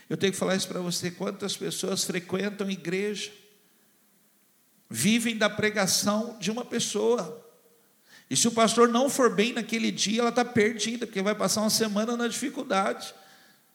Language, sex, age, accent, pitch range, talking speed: Portuguese, male, 60-79, Brazilian, 160-215 Hz, 155 wpm